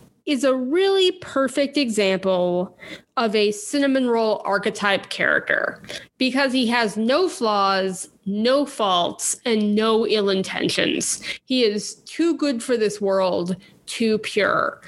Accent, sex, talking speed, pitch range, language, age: American, female, 125 wpm, 200-245 Hz, English, 20-39